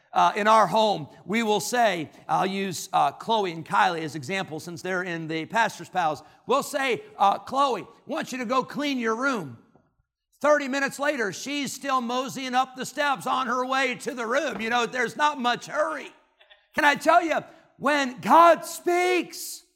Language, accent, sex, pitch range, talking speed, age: English, American, male, 190-270 Hz, 185 wpm, 50-69